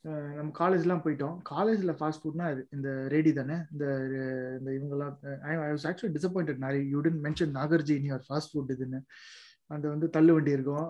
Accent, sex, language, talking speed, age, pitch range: native, male, Tamil, 160 wpm, 20-39, 135-165 Hz